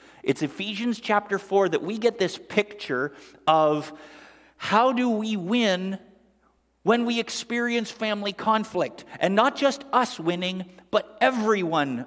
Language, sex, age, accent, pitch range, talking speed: English, male, 50-69, American, 135-210 Hz, 130 wpm